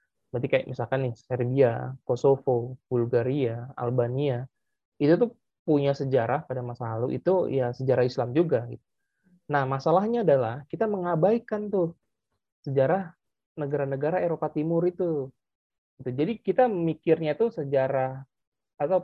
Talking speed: 115 wpm